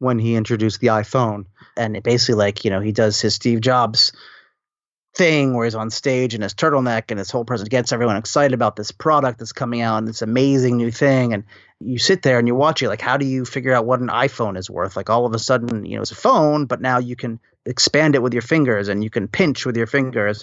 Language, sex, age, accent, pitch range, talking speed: English, male, 30-49, American, 115-140 Hz, 255 wpm